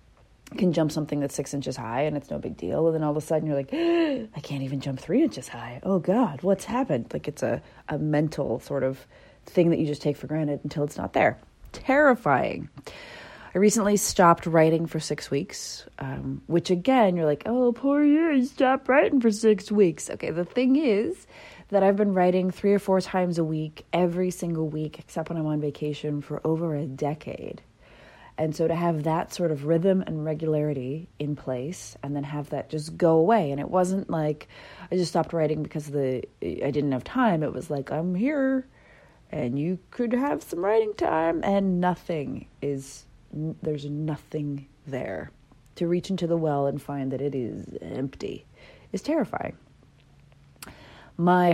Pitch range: 145-190 Hz